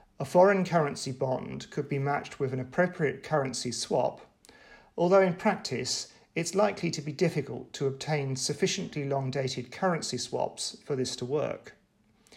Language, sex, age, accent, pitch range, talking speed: English, male, 40-59, British, 130-180 Hz, 145 wpm